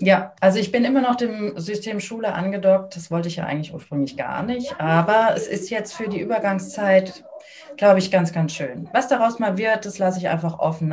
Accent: German